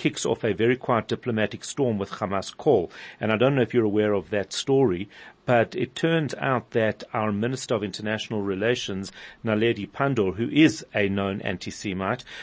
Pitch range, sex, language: 110-135 Hz, male, English